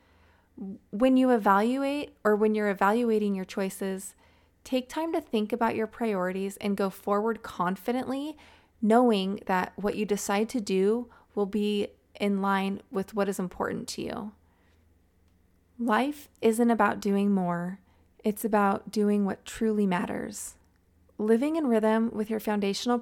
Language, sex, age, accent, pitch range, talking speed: English, female, 20-39, American, 195-230 Hz, 140 wpm